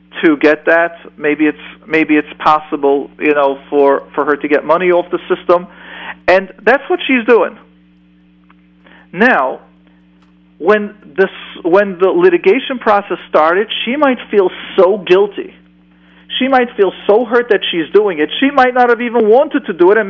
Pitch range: 155-240 Hz